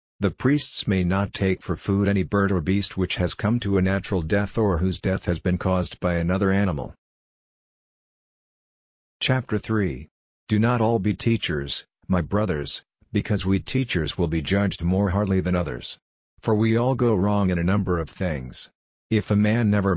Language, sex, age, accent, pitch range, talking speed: English, male, 50-69, American, 90-105 Hz, 180 wpm